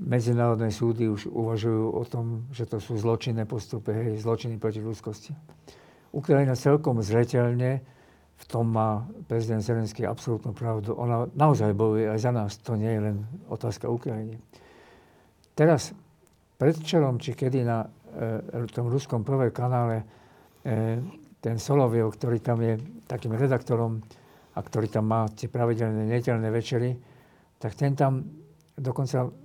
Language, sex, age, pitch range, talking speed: Slovak, male, 50-69, 115-140 Hz, 140 wpm